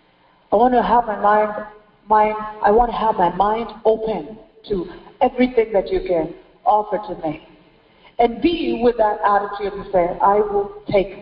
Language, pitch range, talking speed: English, 190-245 Hz, 170 wpm